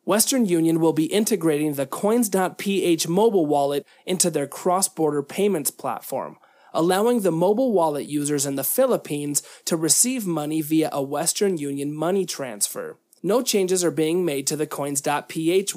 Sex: male